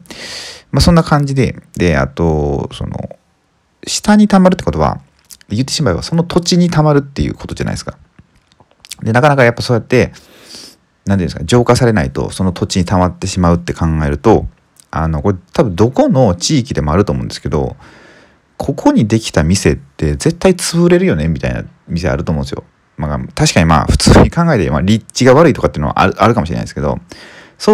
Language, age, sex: Japanese, 30-49, male